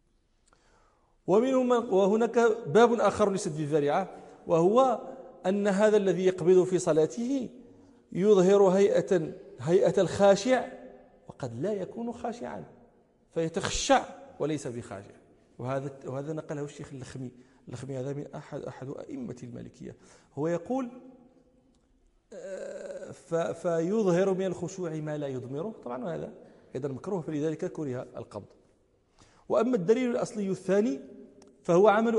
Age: 40-59